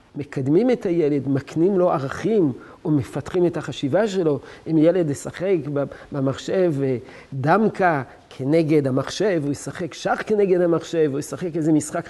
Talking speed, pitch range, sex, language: 135 wpm, 140-180 Hz, male, Hebrew